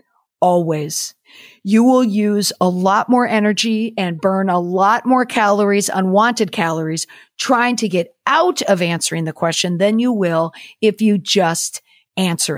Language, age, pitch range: English, 50-69, 170-220 Hz